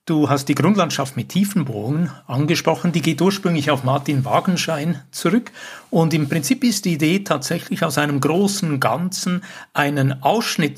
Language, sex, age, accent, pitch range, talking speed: German, male, 60-79, Austrian, 135-175 Hz, 150 wpm